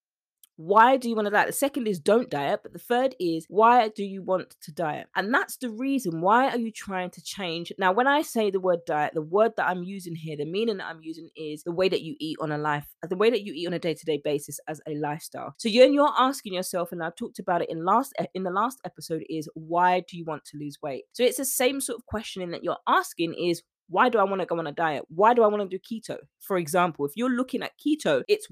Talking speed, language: 270 wpm, English